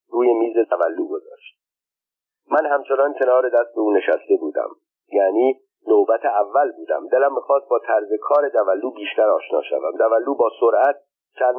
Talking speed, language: 145 wpm, Persian